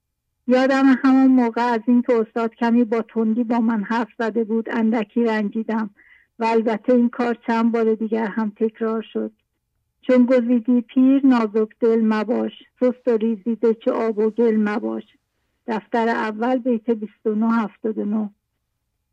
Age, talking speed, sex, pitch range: 50-69, 140 wpm, female, 220-245 Hz